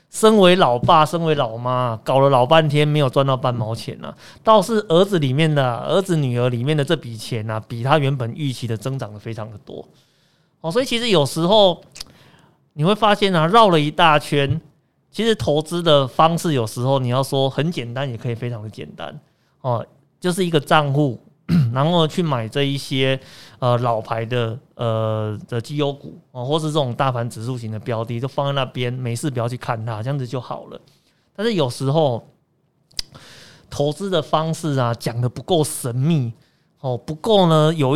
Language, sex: Chinese, male